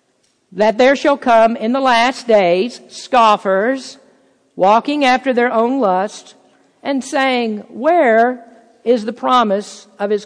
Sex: female